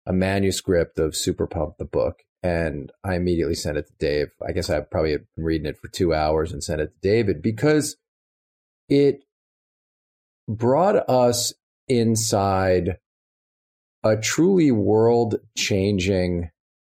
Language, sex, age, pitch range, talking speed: English, male, 40-59, 90-130 Hz, 130 wpm